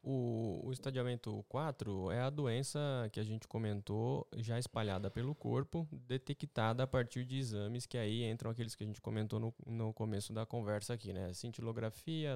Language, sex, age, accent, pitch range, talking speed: Portuguese, male, 10-29, Brazilian, 115-140 Hz, 175 wpm